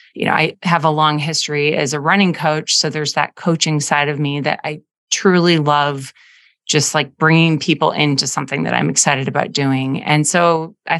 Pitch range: 150-180 Hz